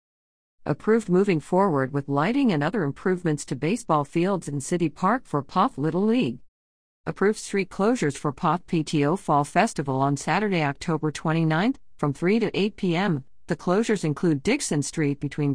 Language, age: English, 50-69